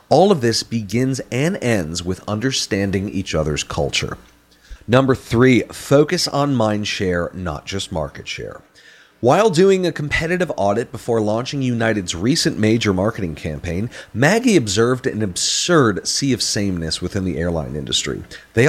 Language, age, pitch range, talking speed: English, 40-59, 95-140 Hz, 145 wpm